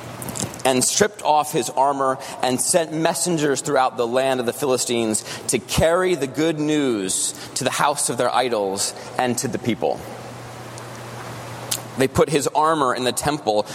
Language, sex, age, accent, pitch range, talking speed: English, male, 30-49, American, 115-135 Hz, 155 wpm